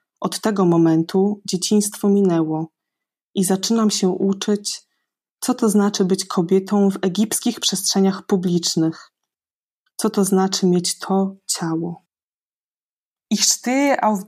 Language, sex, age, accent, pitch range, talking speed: German, female, 20-39, Polish, 185-220 Hz, 115 wpm